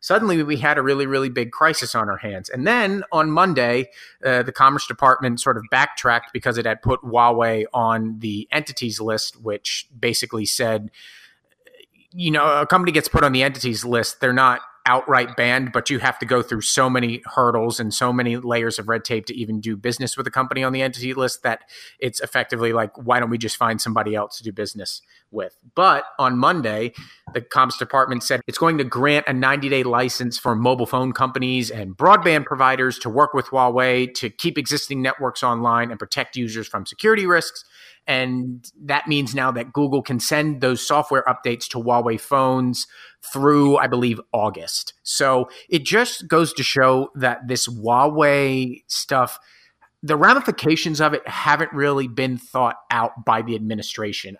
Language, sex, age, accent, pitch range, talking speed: English, male, 30-49, American, 115-140 Hz, 185 wpm